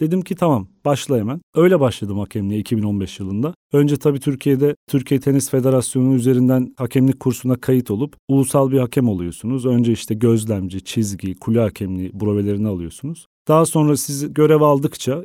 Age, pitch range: 40-59, 115-140 Hz